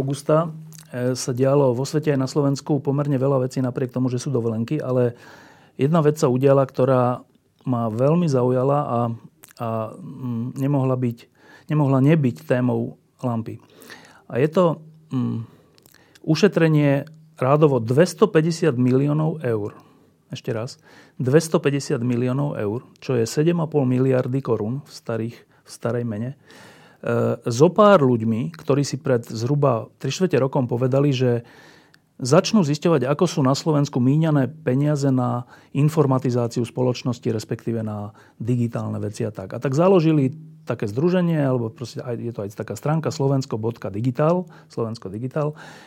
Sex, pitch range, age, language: male, 120-150 Hz, 40-59, Slovak